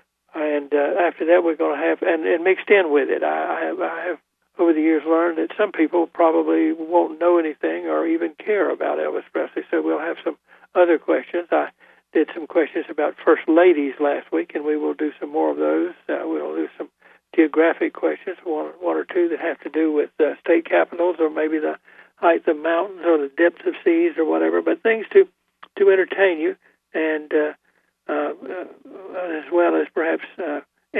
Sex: male